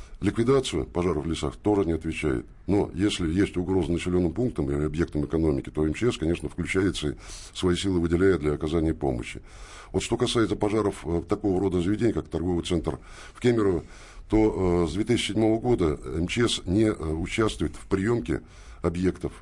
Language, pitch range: Russian, 80-100 Hz